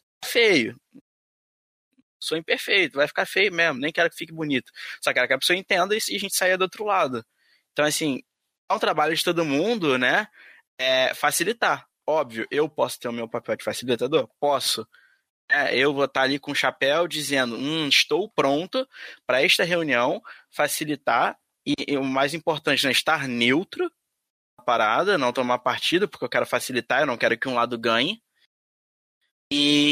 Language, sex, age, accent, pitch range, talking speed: Portuguese, male, 20-39, Brazilian, 130-165 Hz, 175 wpm